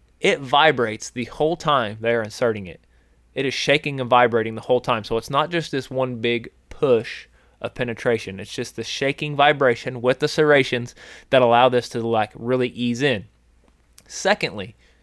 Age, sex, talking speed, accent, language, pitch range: 20-39, male, 170 wpm, American, English, 110-135 Hz